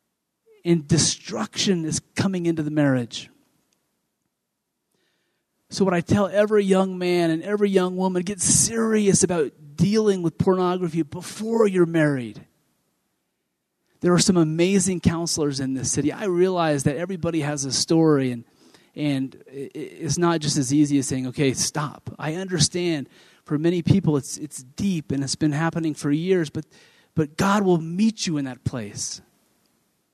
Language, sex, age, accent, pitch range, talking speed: English, male, 30-49, American, 135-175 Hz, 150 wpm